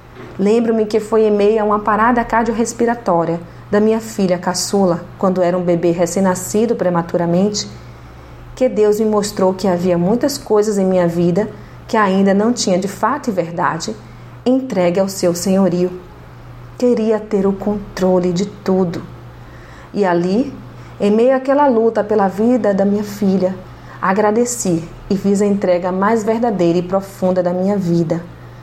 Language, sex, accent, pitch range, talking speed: Portuguese, female, Brazilian, 180-225 Hz, 150 wpm